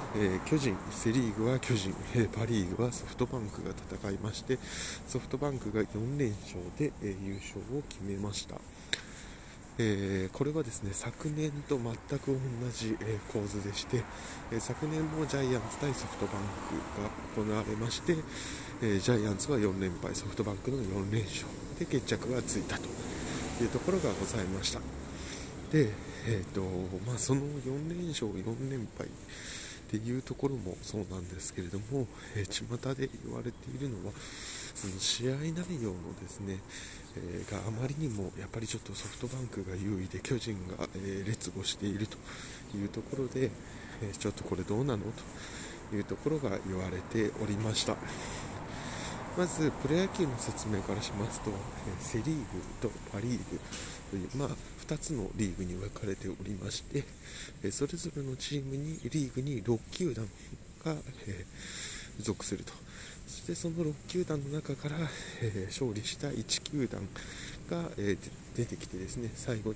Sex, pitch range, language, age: male, 100-130 Hz, Japanese, 20-39